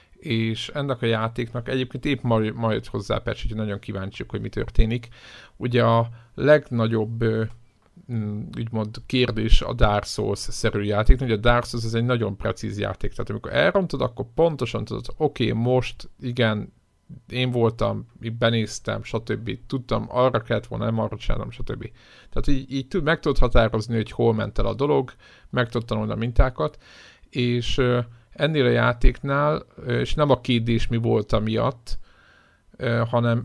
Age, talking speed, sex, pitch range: 50-69, 145 wpm, male, 110-125 Hz